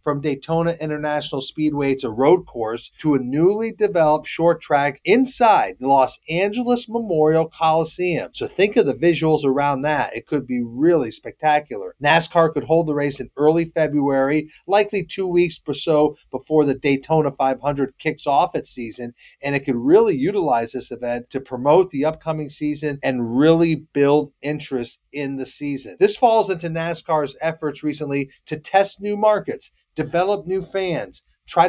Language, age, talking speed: English, 40-59, 165 wpm